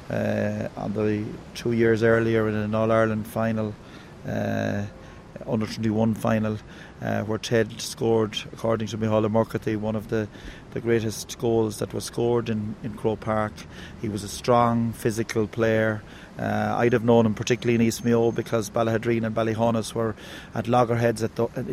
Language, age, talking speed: English, 30-49, 165 wpm